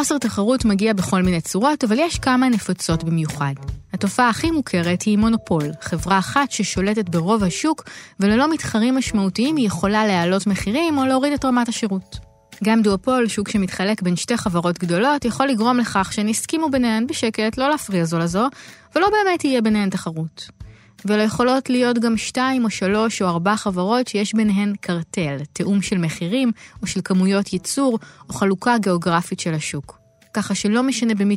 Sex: female